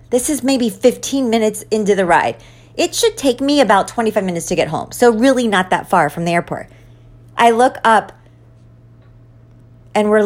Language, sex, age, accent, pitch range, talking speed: English, female, 40-59, American, 170-240 Hz, 180 wpm